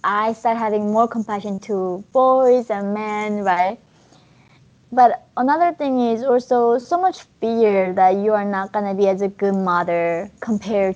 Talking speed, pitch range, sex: 165 wpm, 195-235 Hz, female